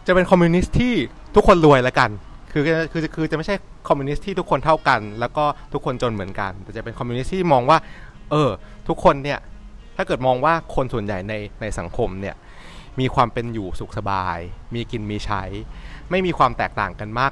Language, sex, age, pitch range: Thai, male, 30-49, 110-150 Hz